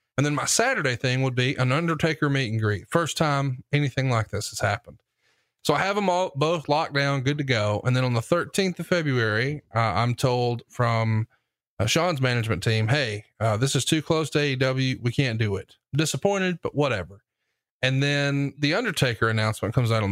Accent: American